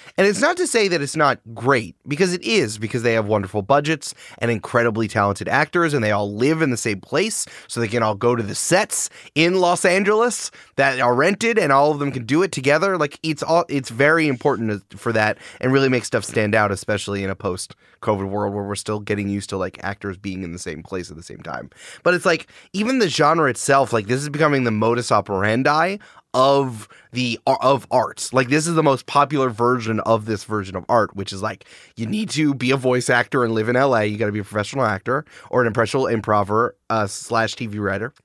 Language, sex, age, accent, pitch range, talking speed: English, male, 20-39, American, 105-140 Hz, 230 wpm